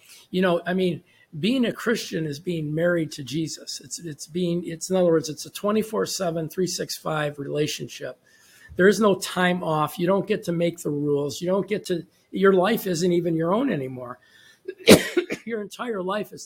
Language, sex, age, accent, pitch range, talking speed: English, male, 50-69, American, 155-185 Hz, 190 wpm